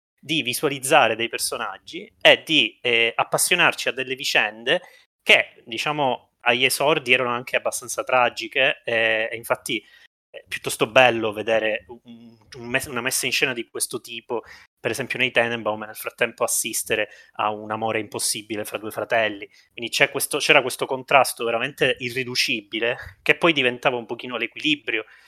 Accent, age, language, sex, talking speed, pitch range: native, 20-39, Italian, male, 140 wpm, 110-130 Hz